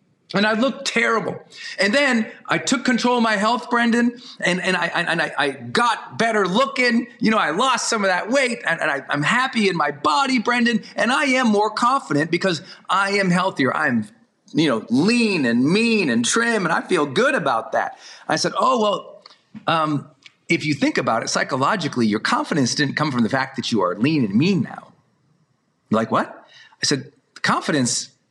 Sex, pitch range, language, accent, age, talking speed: male, 155-235 Hz, English, American, 40-59, 195 wpm